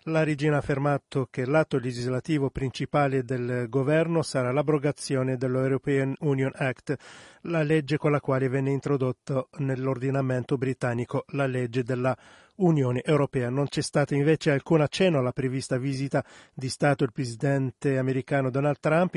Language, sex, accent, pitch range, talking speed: Italian, male, native, 130-150 Hz, 140 wpm